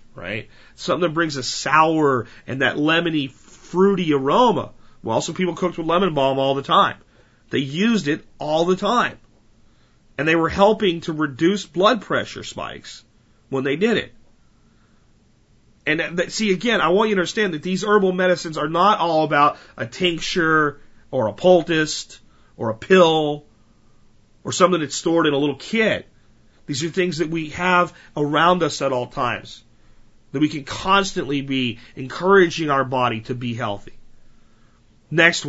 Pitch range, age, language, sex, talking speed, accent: 130-175 Hz, 40-59, English, male, 160 wpm, American